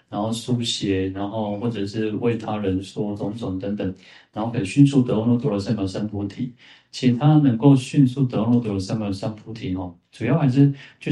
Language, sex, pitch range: Chinese, male, 100-135 Hz